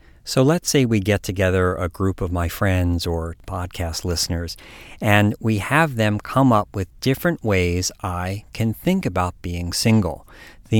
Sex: male